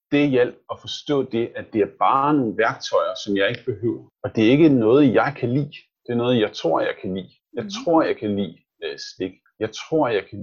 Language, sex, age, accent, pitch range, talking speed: Danish, male, 30-49, native, 110-140 Hz, 240 wpm